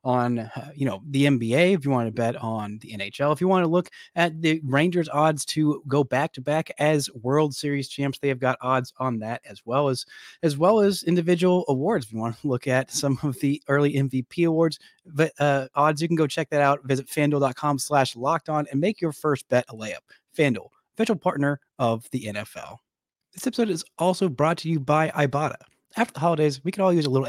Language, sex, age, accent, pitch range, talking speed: English, male, 30-49, American, 130-165 Hz, 225 wpm